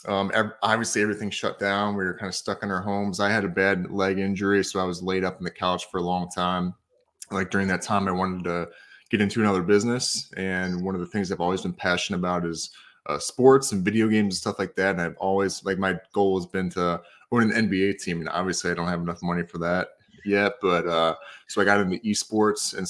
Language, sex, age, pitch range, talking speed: English, male, 20-39, 90-100 Hz, 245 wpm